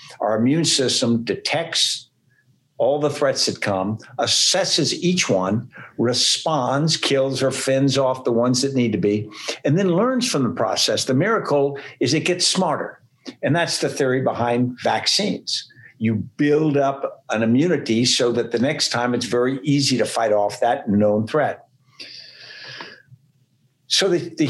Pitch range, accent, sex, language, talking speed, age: 115-145 Hz, American, male, English, 155 wpm, 60-79